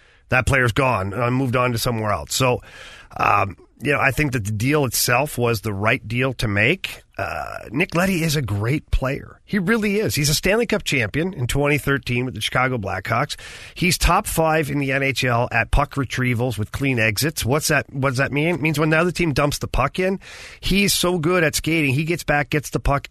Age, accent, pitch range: 40-59, American, 120-150 Hz